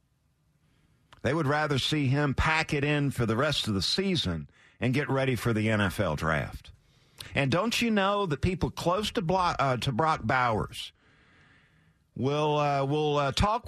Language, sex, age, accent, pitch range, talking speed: English, male, 50-69, American, 120-175 Hz, 160 wpm